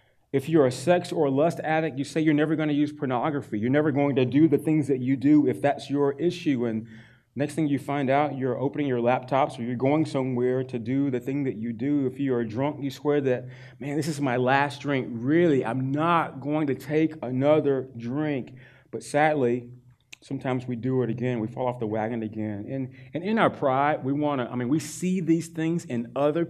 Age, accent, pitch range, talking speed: 30-49, American, 125-150 Hz, 225 wpm